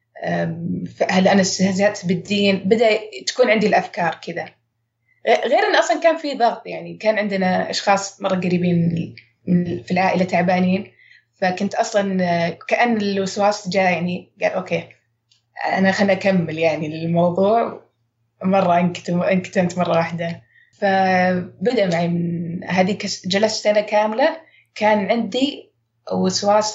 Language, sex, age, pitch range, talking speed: Arabic, female, 20-39, 170-205 Hz, 110 wpm